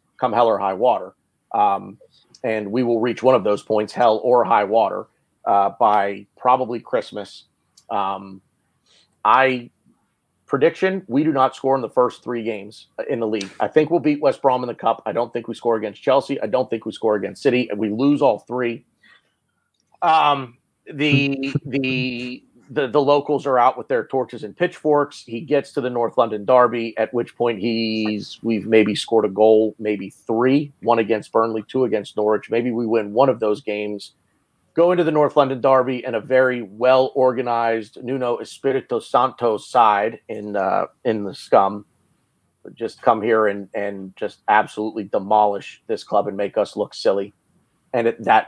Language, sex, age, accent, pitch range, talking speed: English, male, 40-59, American, 105-130 Hz, 180 wpm